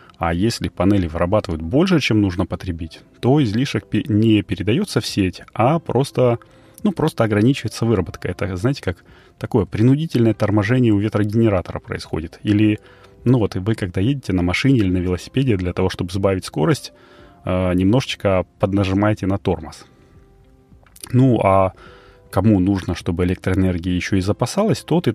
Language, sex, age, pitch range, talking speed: Russian, male, 30-49, 95-115 Hz, 145 wpm